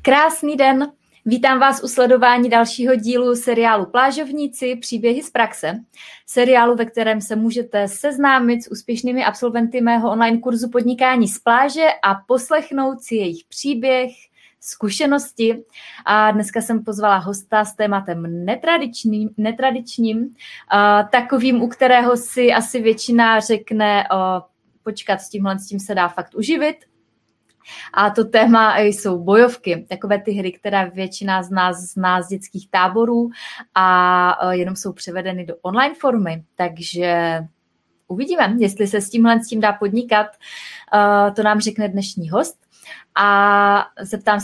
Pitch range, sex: 200-245 Hz, female